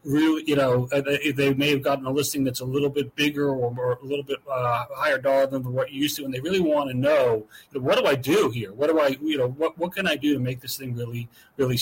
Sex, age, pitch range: male, 40-59, 130-160 Hz